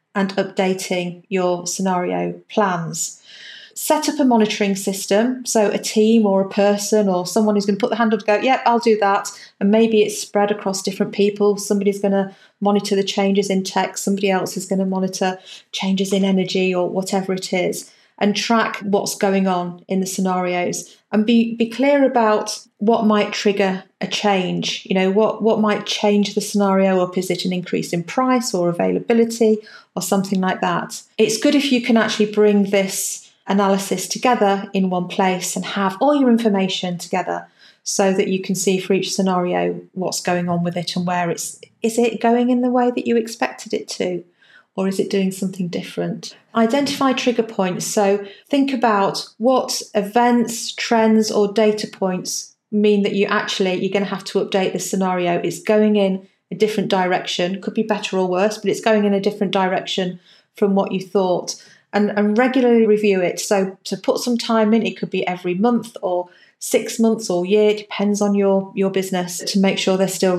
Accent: British